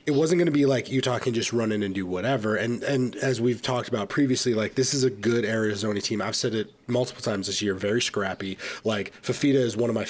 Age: 30-49